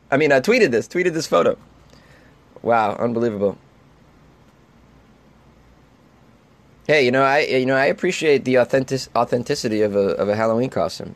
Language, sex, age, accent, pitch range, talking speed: English, male, 20-39, American, 110-140 Hz, 145 wpm